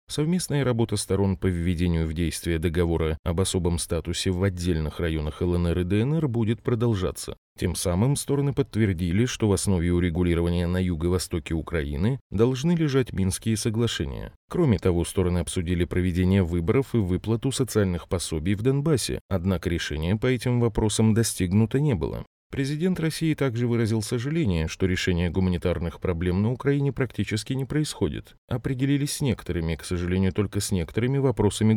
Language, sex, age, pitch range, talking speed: Russian, male, 30-49, 90-120 Hz, 145 wpm